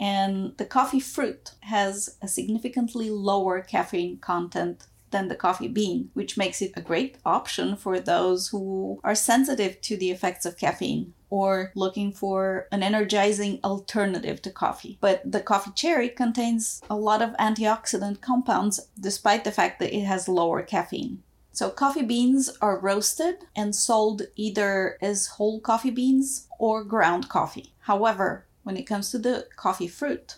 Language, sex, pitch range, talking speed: English, female, 195-230 Hz, 155 wpm